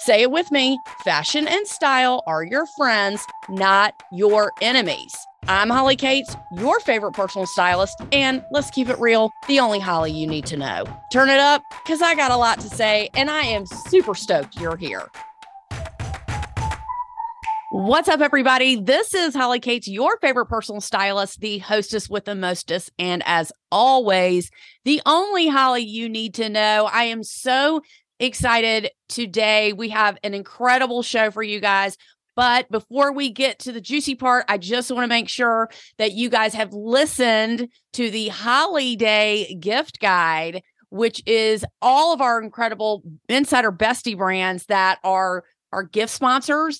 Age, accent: 30-49, American